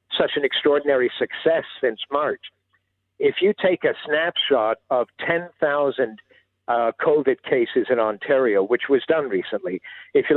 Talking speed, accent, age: 140 wpm, American, 60-79